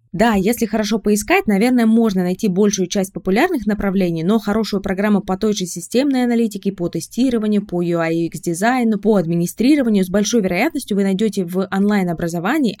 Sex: female